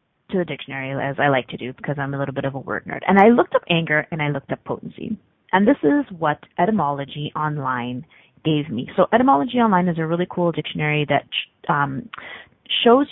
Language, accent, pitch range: English, American, 145-185 Hz